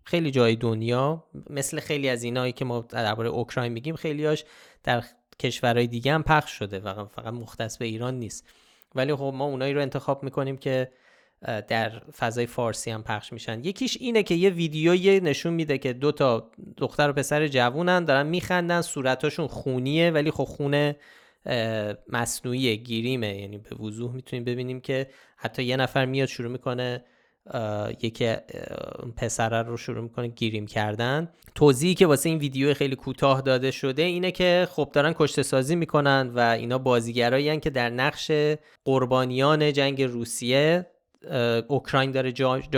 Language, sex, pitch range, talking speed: Persian, male, 120-150 Hz, 150 wpm